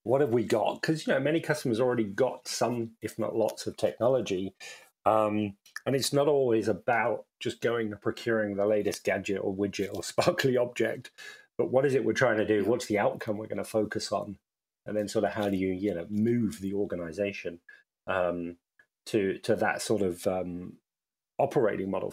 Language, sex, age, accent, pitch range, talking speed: English, male, 30-49, British, 100-120 Hz, 195 wpm